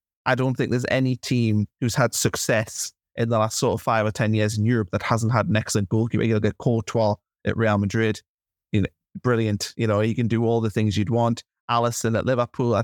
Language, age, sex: English, 20-39, male